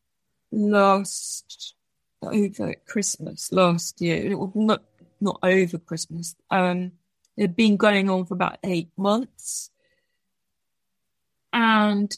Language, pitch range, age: English, 190-235 Hz, 30-49